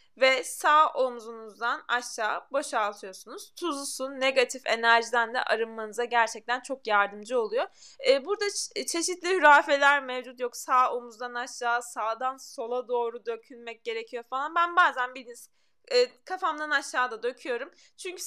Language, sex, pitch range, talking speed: Turkish, female, 235-325 Hz, 130 wpm